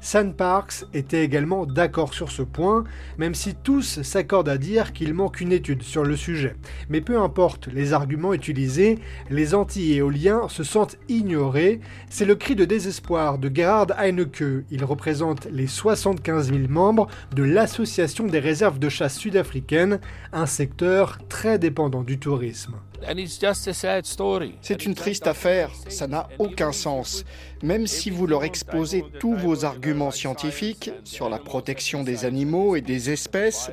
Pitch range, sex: 140-195 Hz, male